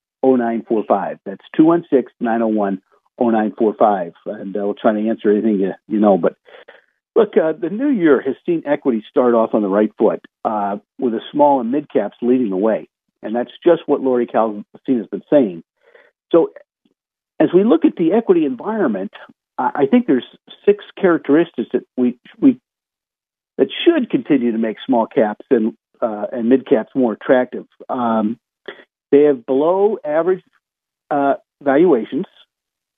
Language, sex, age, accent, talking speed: English, male, 50-69, American, 175 wpm